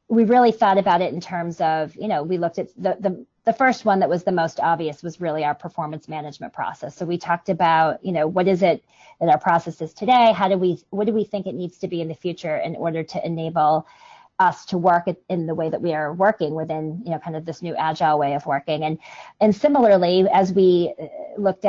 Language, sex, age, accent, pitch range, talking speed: English, female, 30-49, American, 165-195 Hz, 245 wpm